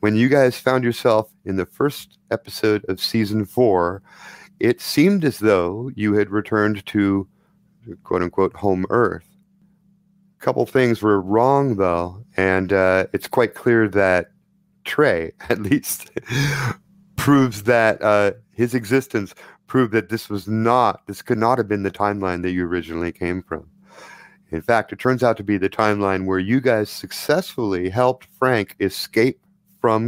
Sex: male